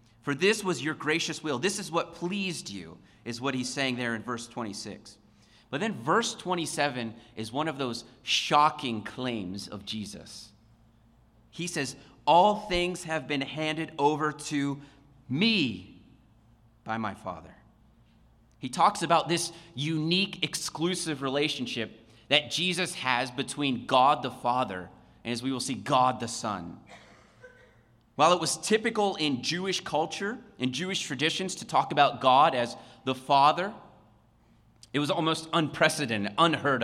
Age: 30-49